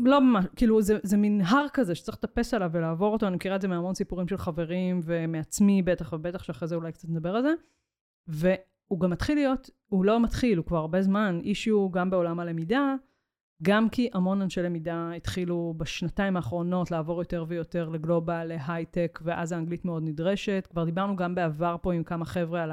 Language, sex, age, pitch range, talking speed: Hebrew, female, 30-49, 170-220 Hz, 190 wpm